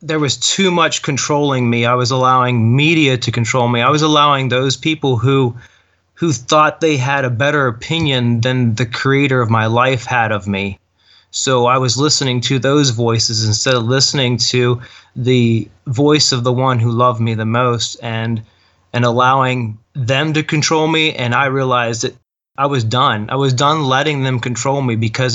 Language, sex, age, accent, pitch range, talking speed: English, male, 30-49, American, 115-145 Hz, 185 wpm